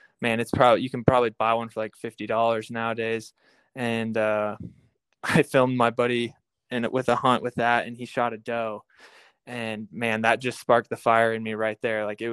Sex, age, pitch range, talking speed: male, 20-39, 115-130 Hz, 210 wpm